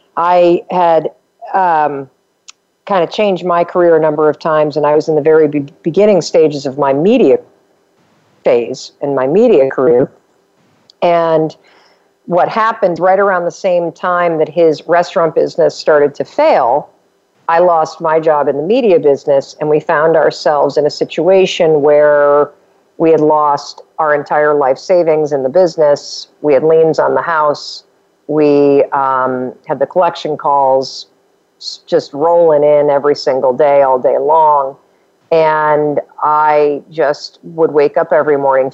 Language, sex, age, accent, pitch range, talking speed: English, female, 50-69, American, 140-175 Hz, 155 wpm